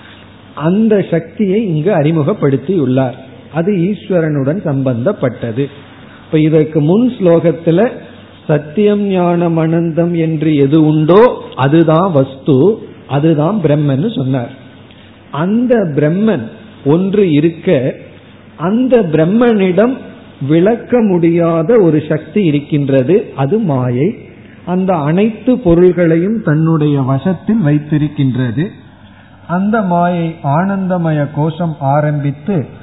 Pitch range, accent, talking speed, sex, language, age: 135-185 Hz, native, 85 wpm, male, Tamil, 50-69